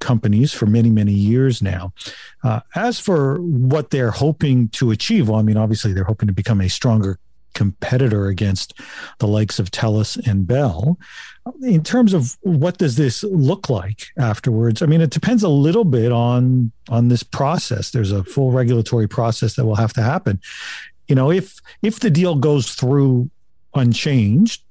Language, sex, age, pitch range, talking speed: English, male, 50-69, 110-145 Hz, 170 wpm